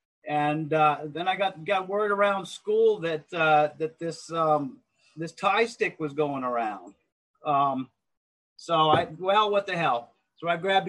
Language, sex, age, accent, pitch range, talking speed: English, male, 30-49, American, 150-175 Hz, 165 wpm